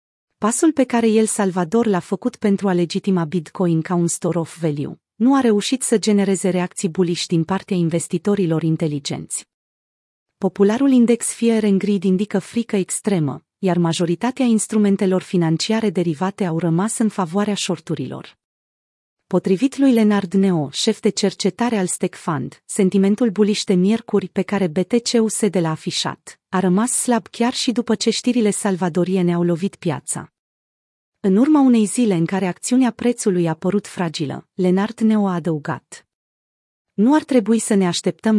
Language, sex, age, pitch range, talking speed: Romanian, female, 30-49, 175-220 Hz, 155 wpm